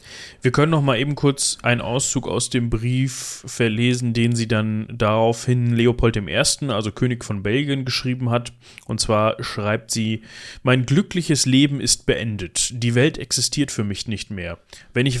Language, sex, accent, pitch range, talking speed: German, male, German, 110-130 Hz, 165 wpm